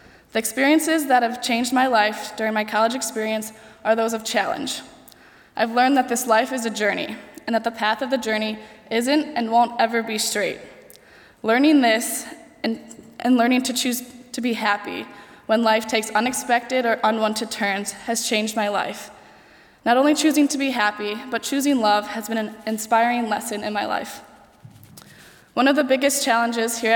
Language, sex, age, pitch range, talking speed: English, female, 10-29, 215-245 Hz, 180 wpm